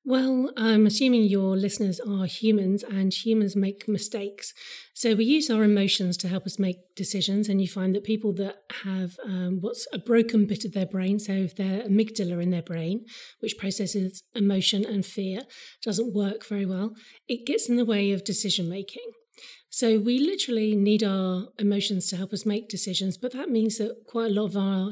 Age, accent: 30-49, British